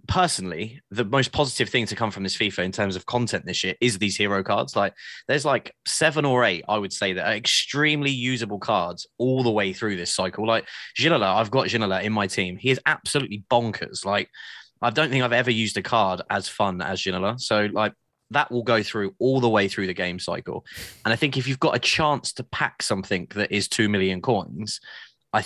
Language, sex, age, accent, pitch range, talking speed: English, male, 20-39, British, 100-125 Hz, 225 wpm